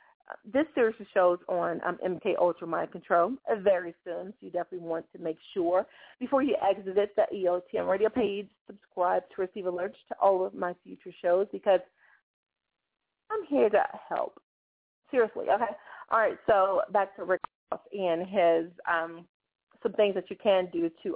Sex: female